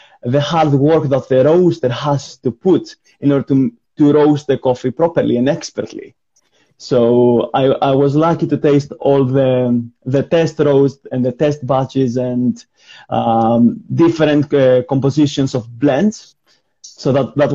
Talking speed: 155 wpm